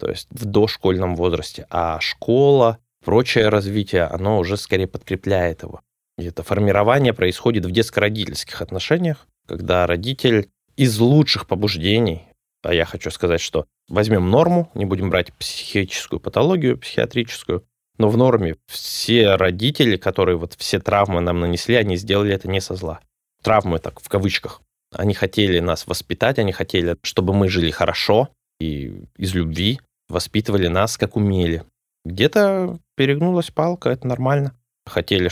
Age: 20-39